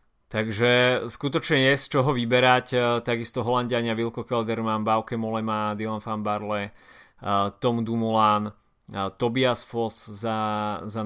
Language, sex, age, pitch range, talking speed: Slovak, male, 20-39, 100-110 Hz, 115 wpm